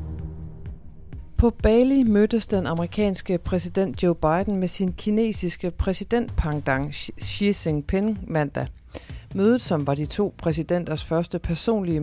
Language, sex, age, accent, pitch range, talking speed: Danish, female, 40-59, native, 140-180 Hz, 115 wpm